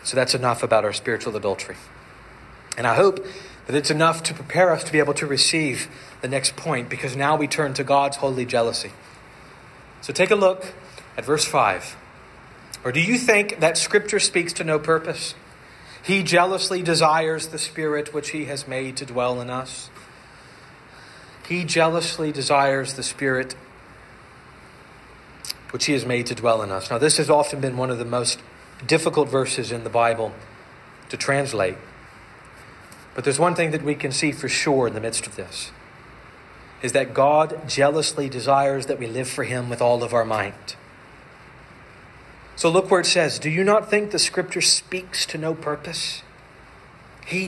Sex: male